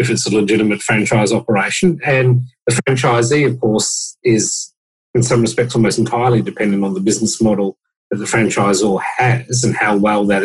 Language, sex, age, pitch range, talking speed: English, male, 40-59, 110-135 Hz, 170 wpm